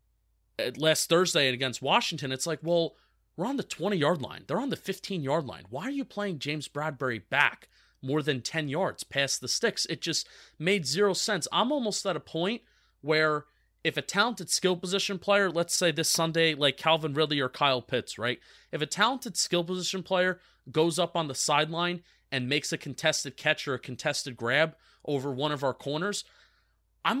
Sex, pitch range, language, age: male, 140-180 Hz, English, 30-49